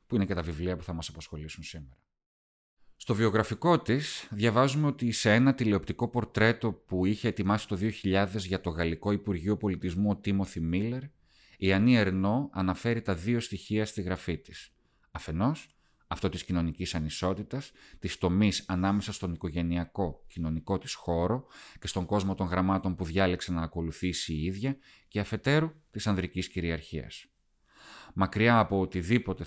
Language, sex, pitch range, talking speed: Greek, male, 90-110 Hz, 145 wpm